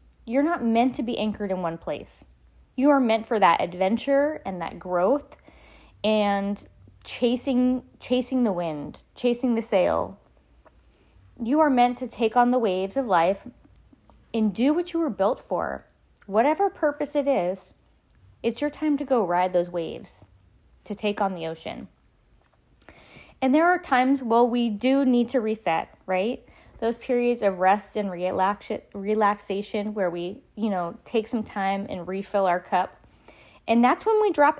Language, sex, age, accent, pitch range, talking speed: English, female, 20-39, American, 190-255 Hz, 160 wpm